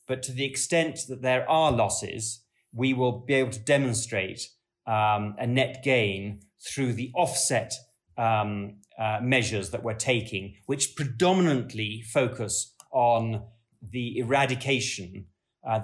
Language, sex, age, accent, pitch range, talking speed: English, male, 30-49, British, 110-130 Hz, 130 wpm